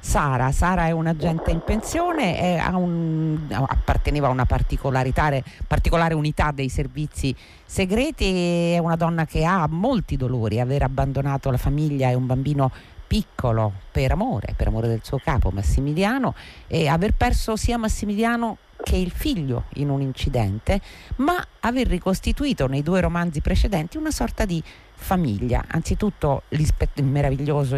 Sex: female